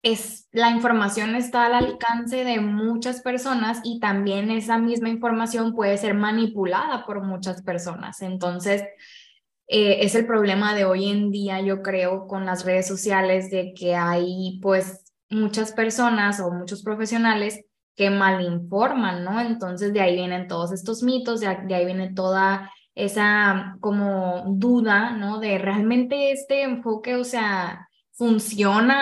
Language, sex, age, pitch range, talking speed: Spanish, female, 10-29, 195-235 Hz, 145 wpm